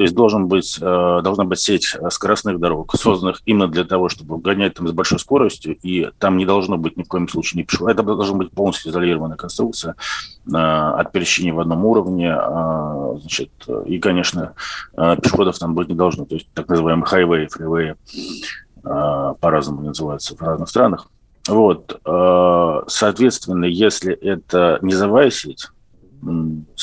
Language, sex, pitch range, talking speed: Russian, male, 80-95 Hz, 150 wpm